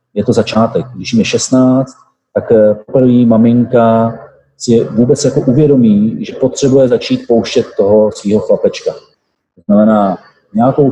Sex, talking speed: male, 130 wpm